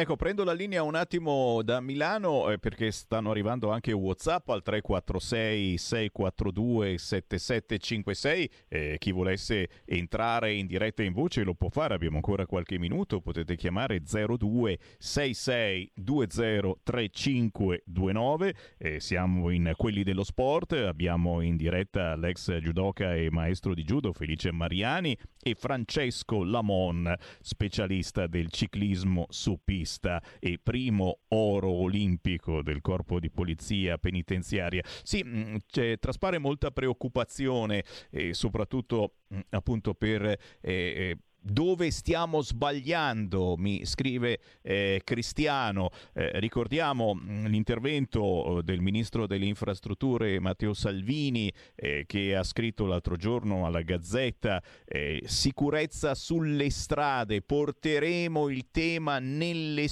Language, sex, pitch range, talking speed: Italian, male, 95-130 Hz, 120 wpm